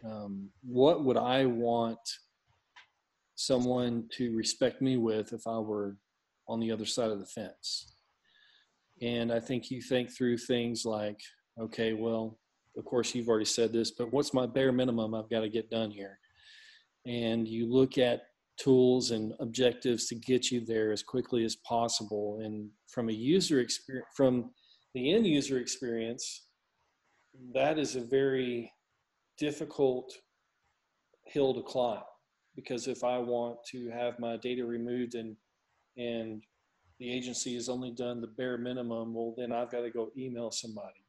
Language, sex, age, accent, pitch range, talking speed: English, male, 40-59, American, 115-130 Hz, 150 wpm